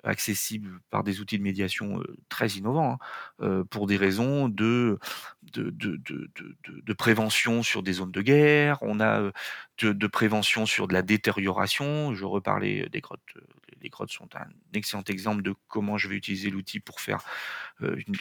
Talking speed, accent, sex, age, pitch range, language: 170 wpm, French, male, 30-49, 100-120 Hz, French